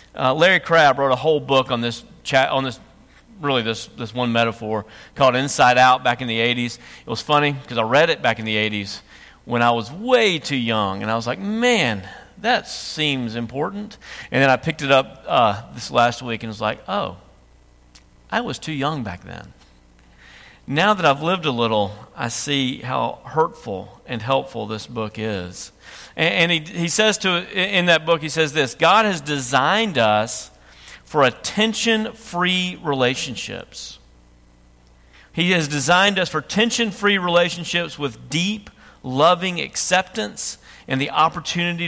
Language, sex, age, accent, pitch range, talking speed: English, male, 40-59, American, 110-180 Hz, 170 wpm